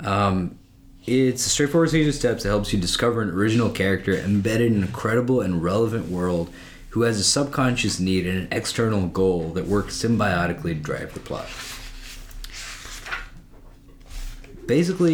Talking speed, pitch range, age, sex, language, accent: 155 wpm, 95-120 Hz, 30-49, male, English, American